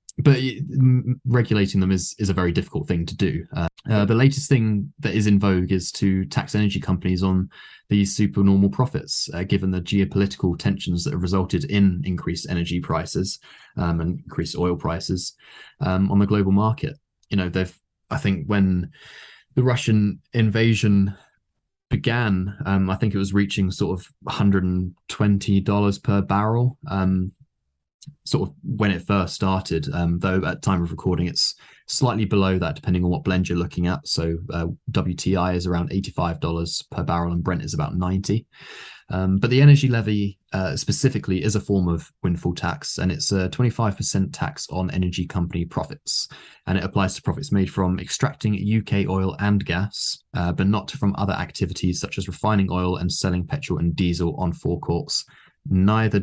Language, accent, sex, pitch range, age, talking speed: English, British, male, 90-110 Hz, 20-39, 175 wpm